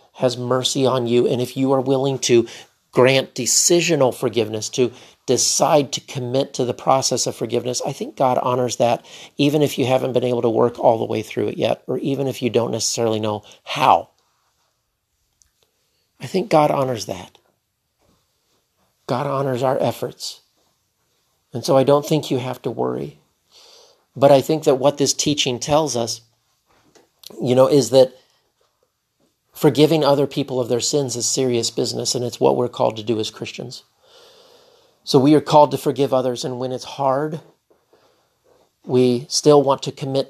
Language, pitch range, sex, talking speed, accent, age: English, 125-150 Hz, male, 170 wpm, American, 50-69